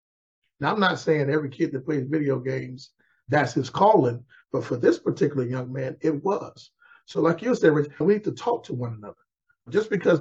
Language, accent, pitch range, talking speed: English, American, 135-170 Hz, 200 wpm